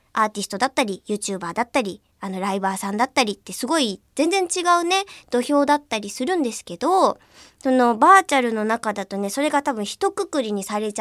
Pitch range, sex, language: 215-320 Hz, male, Japanese